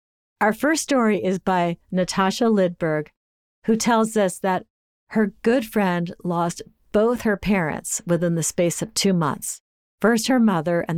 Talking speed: 155 wpm